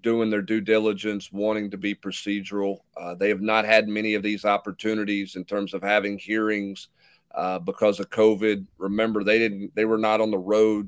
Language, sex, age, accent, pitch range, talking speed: English, male, 40-59, American, 100-115 Hz, 190 wpm